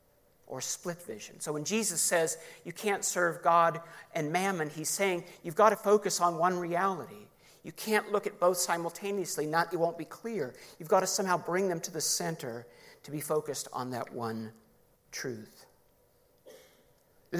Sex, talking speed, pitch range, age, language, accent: male, 170 wpm, 155-200 Hz, 50-69, English, American